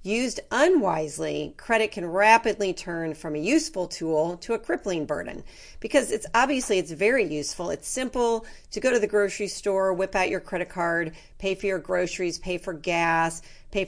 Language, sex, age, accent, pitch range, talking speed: English, female, 40-59, American, 165-215 Hz, 175 wpm